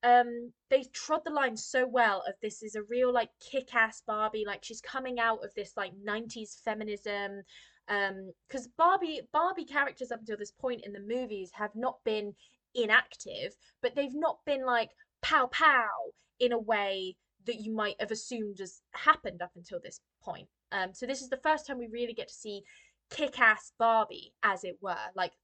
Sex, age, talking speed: female, 20-39, 185 wpm